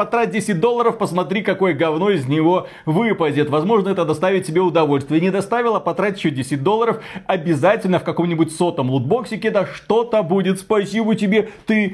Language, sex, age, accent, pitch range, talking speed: Russian, male, 30-49, native, 145-195 Hz, 155 wpm